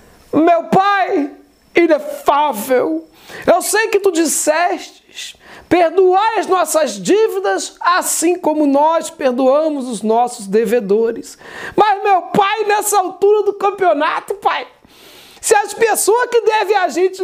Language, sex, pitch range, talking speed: Portuguese, male, 315-405 Hz, 120 wpm